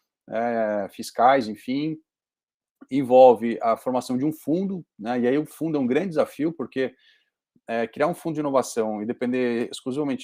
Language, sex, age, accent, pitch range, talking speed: Portuguese, male, 30-49, Brazilian, 120-150 Hz, 165 wpm